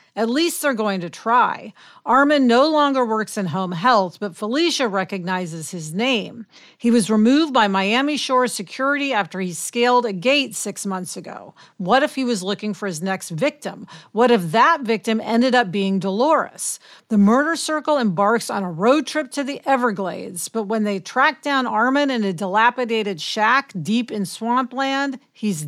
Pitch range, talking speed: 195-255 Hz, 175 wpm